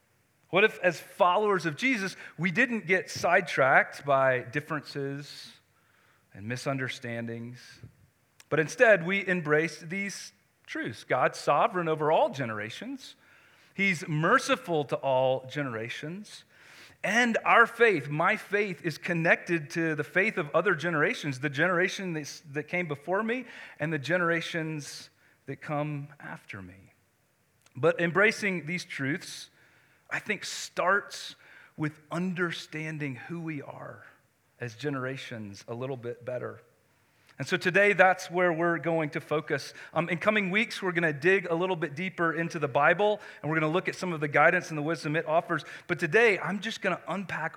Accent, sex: American, male